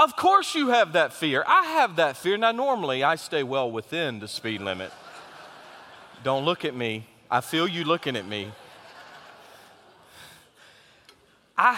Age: 40-59